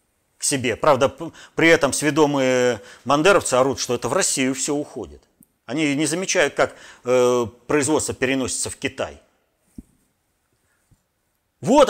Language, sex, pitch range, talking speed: Russian, male, 120-190 Hz, 120 wpm